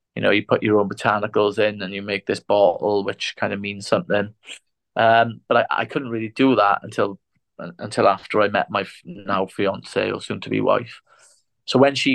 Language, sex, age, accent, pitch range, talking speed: English, male, 30-49, British, 105-120 Hz, 205 wpm